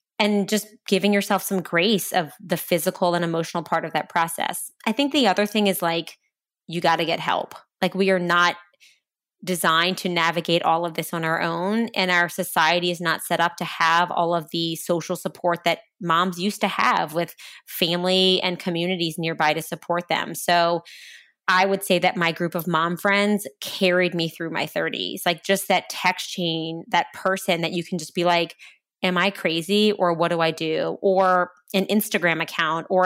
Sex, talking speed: female, 195 wpm